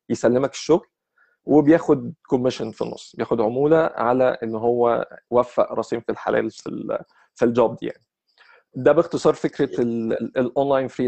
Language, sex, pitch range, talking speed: Arabic, male, 120-145 Hz, 135 wpm